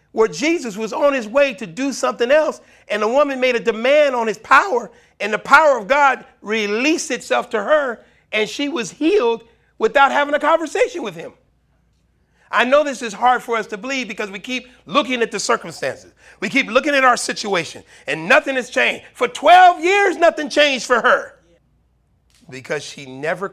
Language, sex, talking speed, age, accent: English, male, 190 wpm, 40-59, American